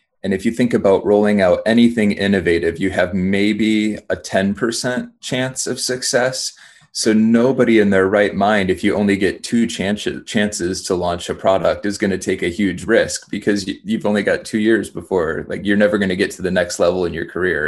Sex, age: male, 30-49